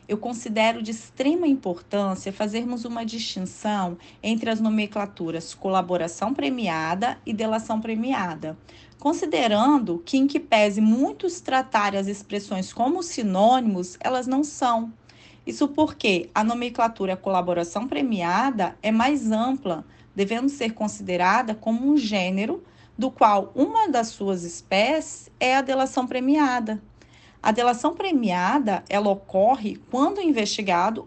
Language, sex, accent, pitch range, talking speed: Portuguese, female, Brazilian, 195-265 Hz, 120 wpm